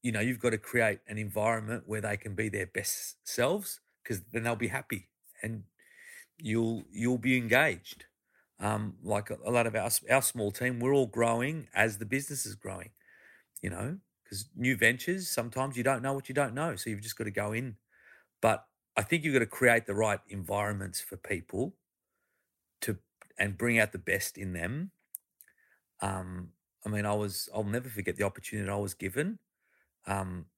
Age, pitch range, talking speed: 40-59, 100-125 Hz, 190 wpm